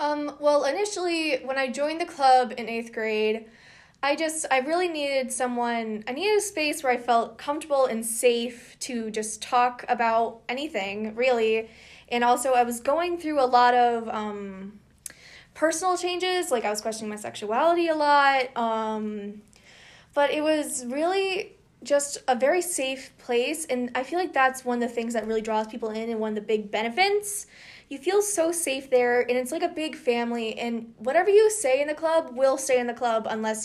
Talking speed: 190 wpm